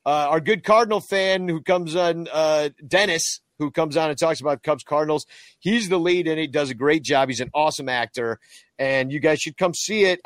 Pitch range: 135-170 Hz